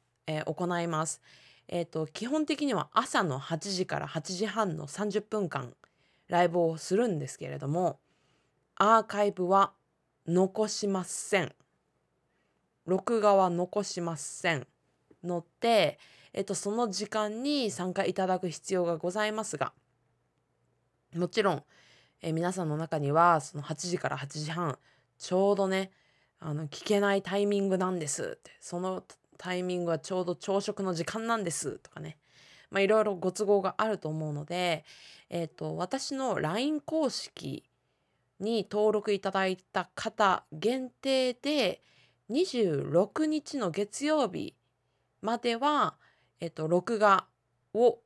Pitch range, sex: 160-215 Hz, female